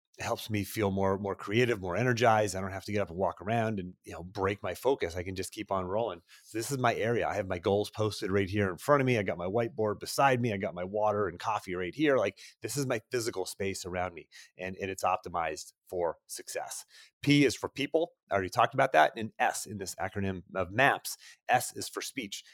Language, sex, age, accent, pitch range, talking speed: English, male, 30-49, American, 95-130 Hz, 250 wpm